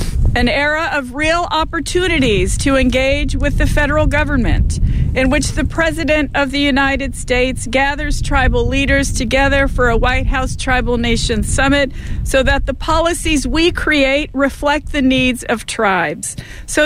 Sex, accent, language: female, American, English